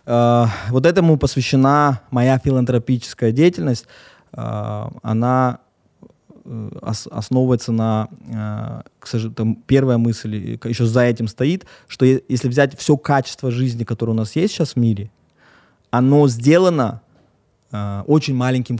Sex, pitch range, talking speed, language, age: male, 120-150 Hz, 130 wpm, Russian, 20-39